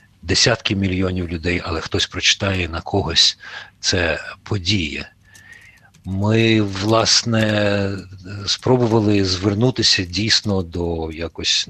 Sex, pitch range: male, 90-110 Hz